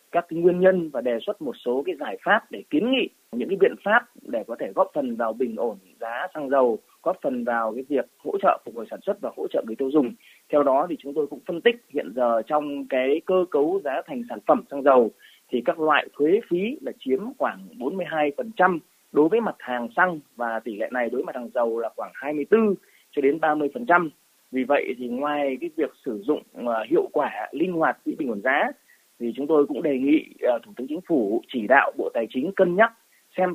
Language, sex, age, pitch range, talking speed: Vietnamese, male, 20-39, 140-230 Hz, 235 wpm